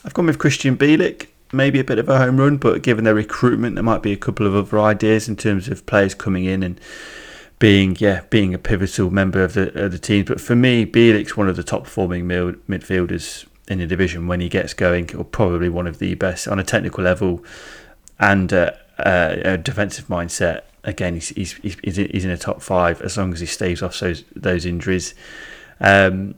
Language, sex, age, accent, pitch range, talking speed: English, male, 30-49, British, 90-105 Hz, 210 wpm